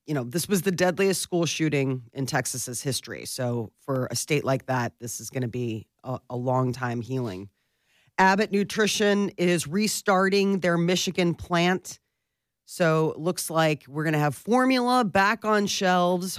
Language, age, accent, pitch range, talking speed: English, 40-59, American, 130-180 Hz, 170 wpm